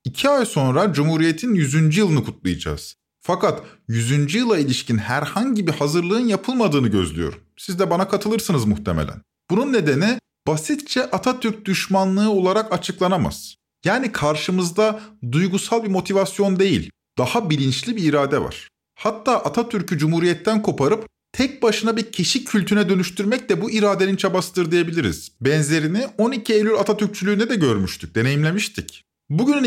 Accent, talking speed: native, 125 wpm